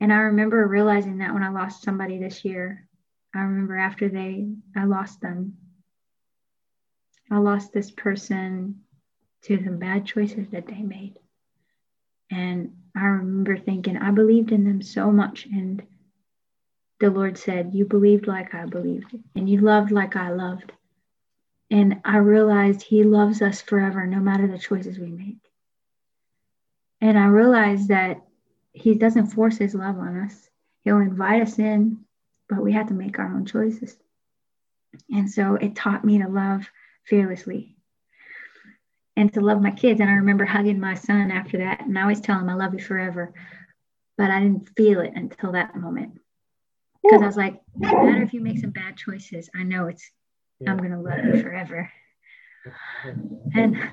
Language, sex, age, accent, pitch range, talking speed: English, female, 20-39, American, 190-215 Hz, 165 wpm